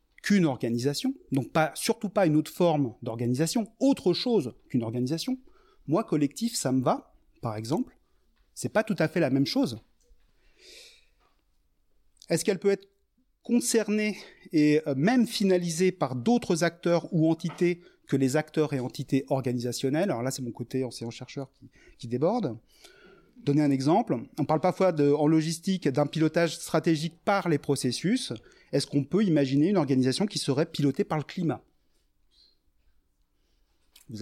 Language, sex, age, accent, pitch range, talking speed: French, male, 30-49, French, 135-190 Hz, 150 wpm